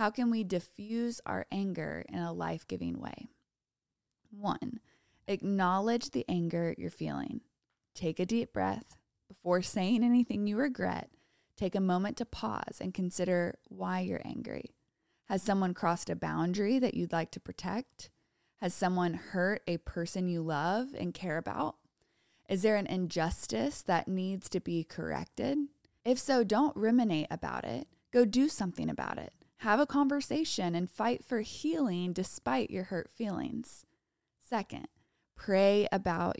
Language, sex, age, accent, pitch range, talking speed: English, female, 20-39, American, 175-230 Hz, 145 wpm